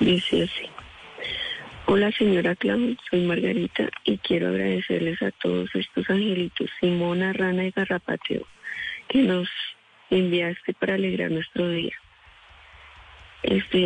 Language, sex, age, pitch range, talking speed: Spanish, female, 30-49, 170-195 Hz, 115 wpm